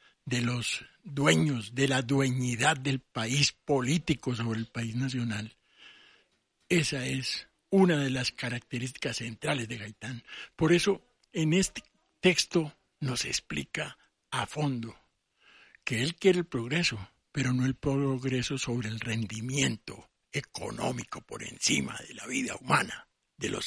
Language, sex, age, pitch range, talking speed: Spanish, male, 60-79, 115-145 Hz, 130 wpm